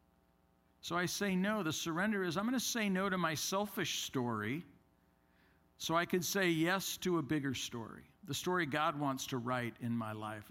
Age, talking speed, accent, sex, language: 50-69, 195 wpm, American, male, English